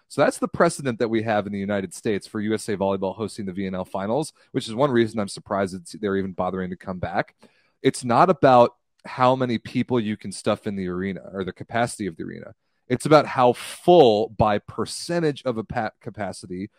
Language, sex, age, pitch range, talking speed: English, male, 30-49, 100-130 Hz, 205 wpm